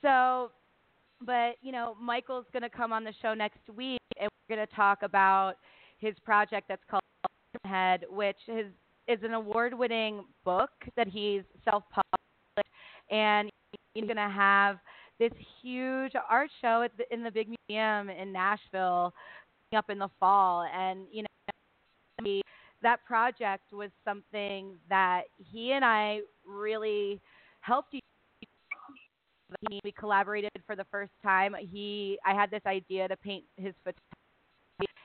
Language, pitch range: English, 190-220 Hz